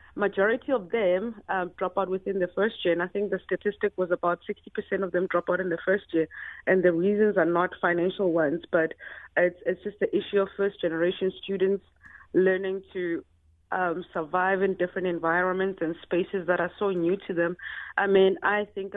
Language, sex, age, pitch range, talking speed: English, female, 30-49, 175-195 Hz, 200 wpm